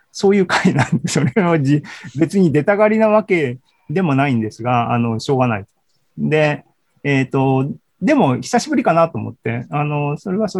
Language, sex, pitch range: Japanese, male, 125-170 Hz